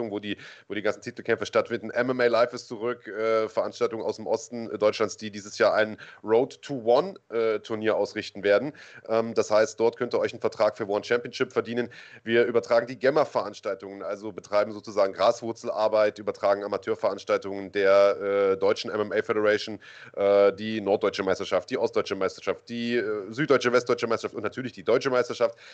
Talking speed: 160 wpm